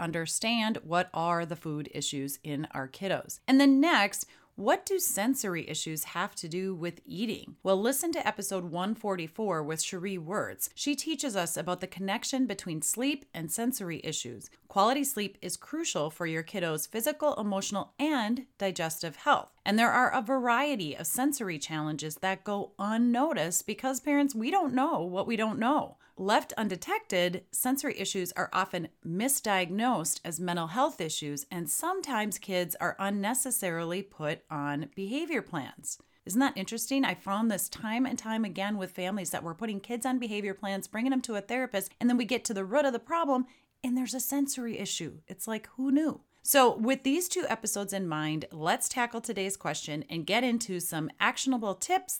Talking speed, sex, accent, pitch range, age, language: 175 wpm, female, American, 170-240 Hz, 30-49, English